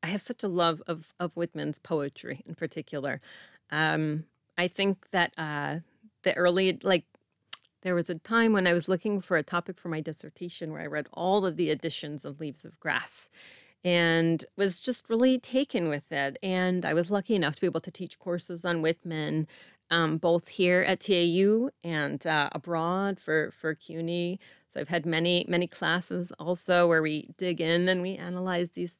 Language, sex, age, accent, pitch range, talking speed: English, female, 30-49, American, 165-200 Hz, 185 wpm